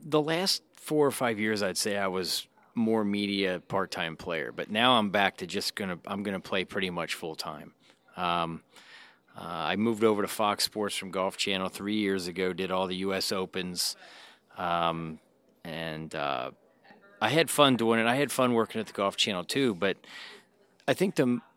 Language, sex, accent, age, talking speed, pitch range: English, male, American, 40-59, 185 wpm, 90-110 Hz